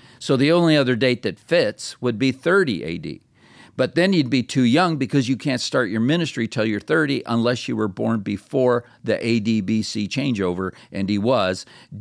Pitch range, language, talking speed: 100-125 Hz, English, 185 wpm